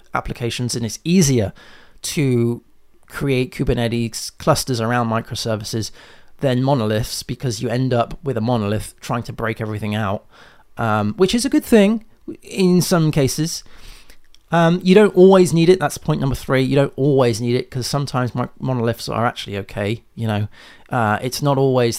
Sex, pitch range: male, 115-140 Hz